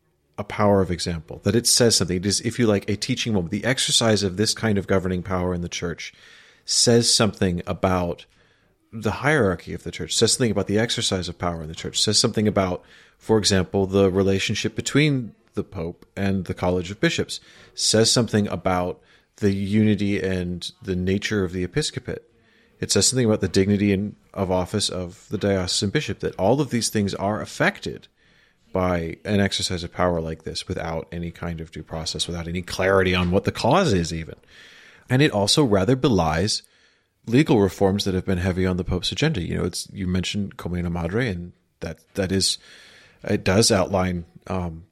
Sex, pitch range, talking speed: male, 90-105 Hz, 190 wpm